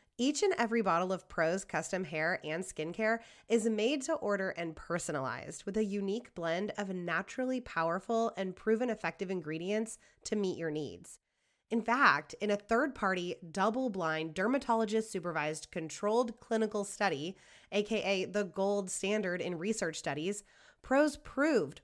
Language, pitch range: English, 180-230 Hz